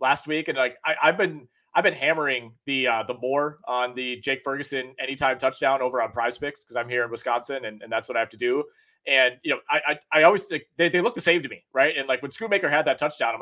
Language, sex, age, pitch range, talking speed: English, male, 30-49, 130-155 Hz, 270 wpm